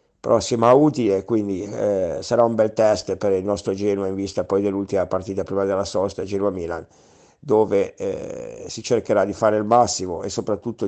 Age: 50-69